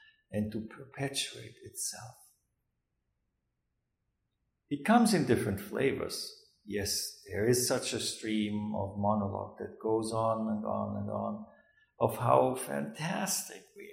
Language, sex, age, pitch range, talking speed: English, male, 50-69, 105-125 Hz, 120 wpm